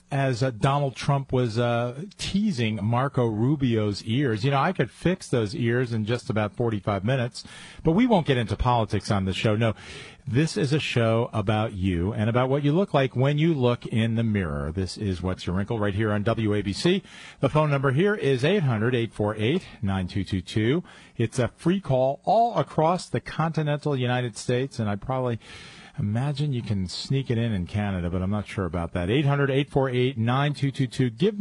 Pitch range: 105-145 Hz